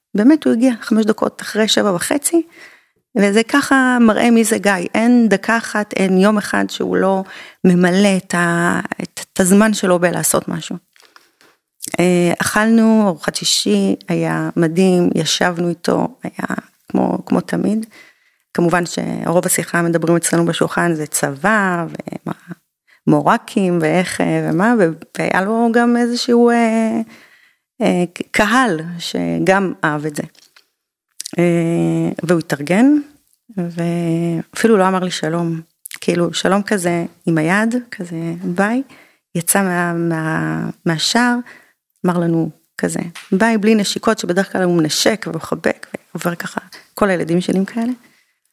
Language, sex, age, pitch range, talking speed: Hebrew, female, 30-49, 170-225 Hz, 120 wpm